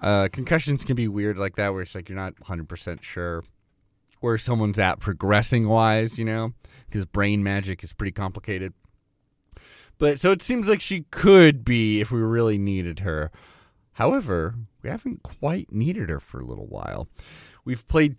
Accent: American